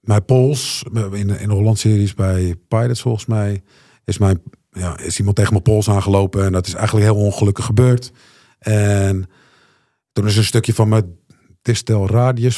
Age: 50-69